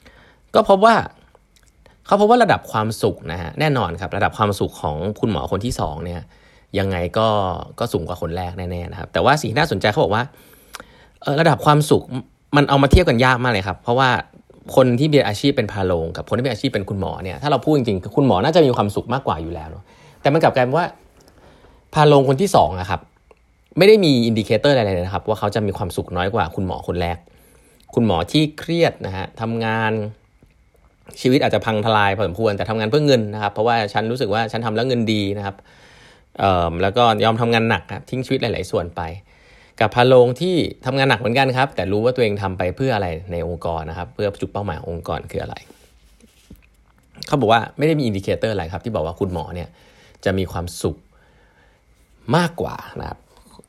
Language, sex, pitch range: Thai, male, 90-130 Hz